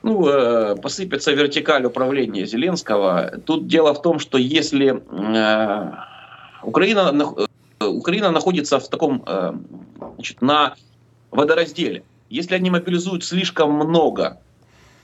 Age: 30-49